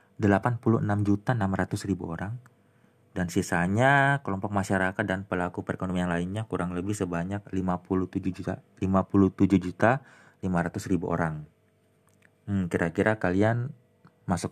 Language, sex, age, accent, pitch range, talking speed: Indonesian, male, 30-49, native, 90-105 Hz, 105 wpm